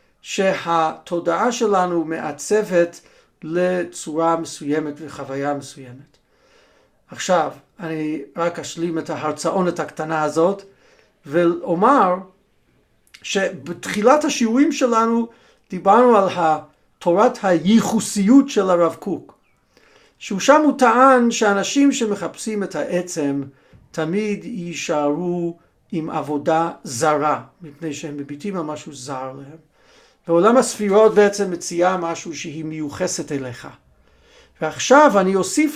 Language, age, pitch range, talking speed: Hebrew, 50-69, 155-215 Hz, 90 wpm